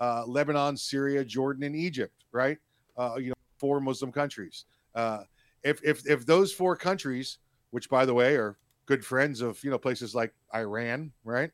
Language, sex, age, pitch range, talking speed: English, male, 40-59, 115-140 Hz, 175 wpm